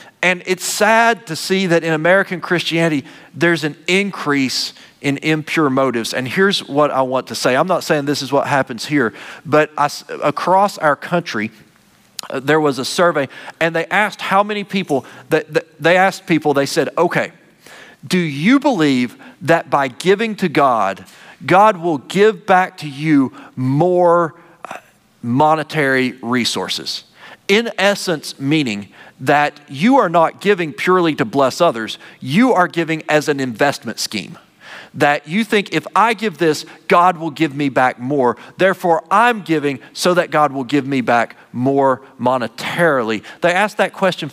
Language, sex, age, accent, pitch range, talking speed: English, male, 40-59, American, 135-185 Hz, 160 wpm